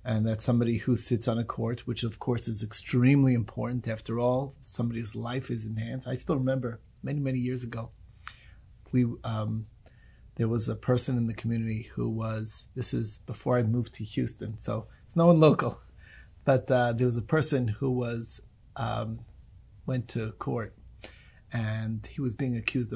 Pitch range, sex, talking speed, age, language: 110-130 Hz, male, 180 wpm, 30-49, English